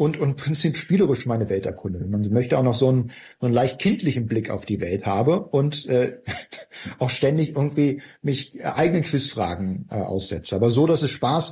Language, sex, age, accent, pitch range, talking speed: German, male, 50-69, German, 115-160 Hz, 195 wpm